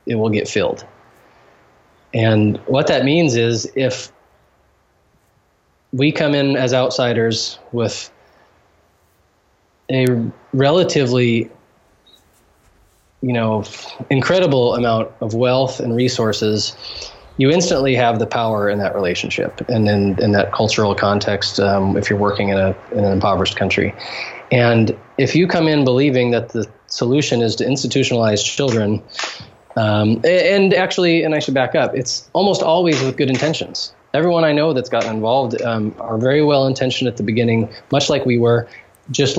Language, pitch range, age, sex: English, 110-135 Hz, 20-39, male